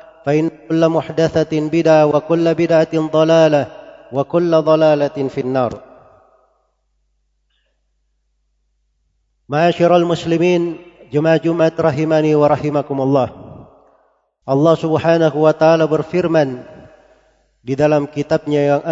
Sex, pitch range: male, 145-165 Hz